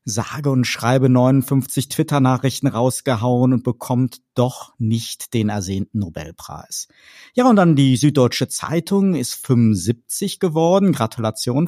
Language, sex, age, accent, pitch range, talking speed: English, male, 50-69, German, 115-150 Hz, 120 wpm